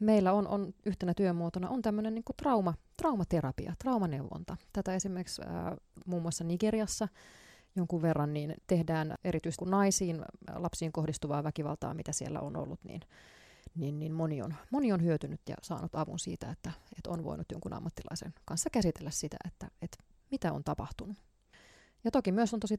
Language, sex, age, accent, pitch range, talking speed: Finnish, female, 30-49, native, 155-185 Hz, 165 wpm